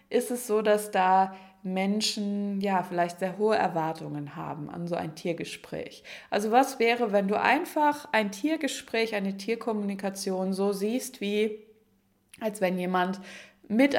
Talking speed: 135 wpm